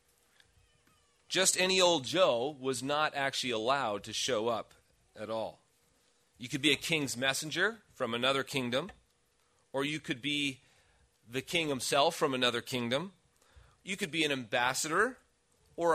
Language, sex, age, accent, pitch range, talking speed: English, male, 40-59, American, 130-170 Hz, 145 wpm